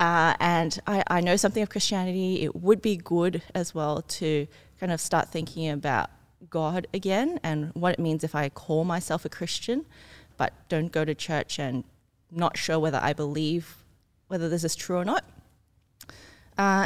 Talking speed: 180 wpm